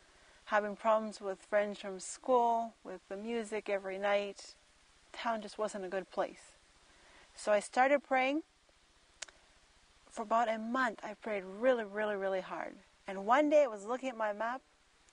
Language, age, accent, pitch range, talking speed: English, 40-59, American, 200-245 Hz, 160 wpm